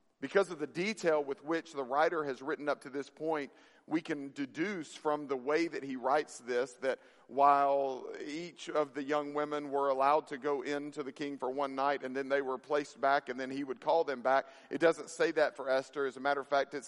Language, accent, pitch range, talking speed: English, American, 130-150 Hz, 235 wpm